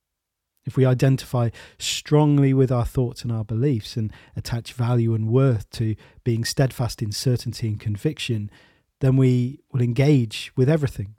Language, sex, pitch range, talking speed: English, male, 110-135 Hz, 150 wpm